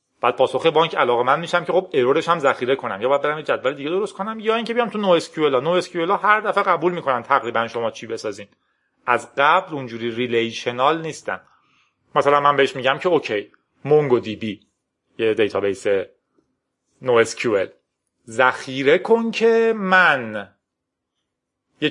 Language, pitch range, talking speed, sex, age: Persian, 130-205 Hz, 160 wpm, male, 30-49